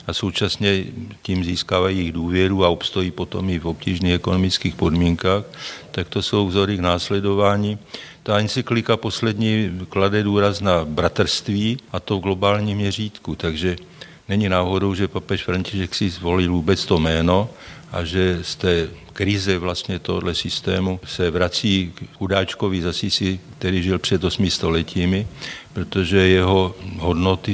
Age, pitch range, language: 50-69, 85-100 Hz, Slovak